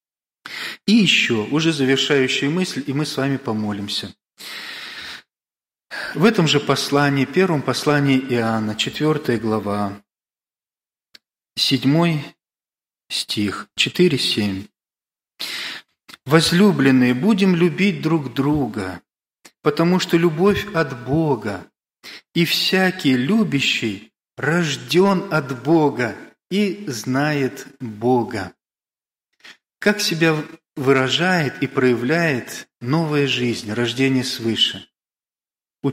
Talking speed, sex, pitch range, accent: 85 wpm, male, 125-160 Hz, native